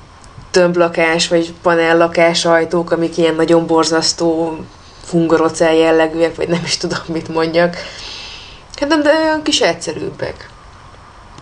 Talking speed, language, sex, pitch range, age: 115 wpm, Hungarian, female, 150-185 Hz, 20-39